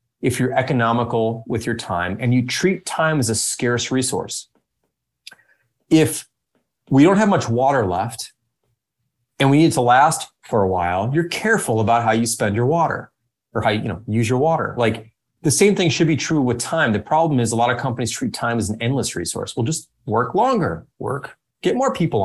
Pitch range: 110-135 Hz